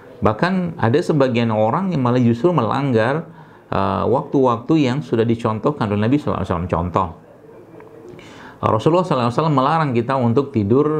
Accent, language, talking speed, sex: native, Indonesian, 120 wpm, male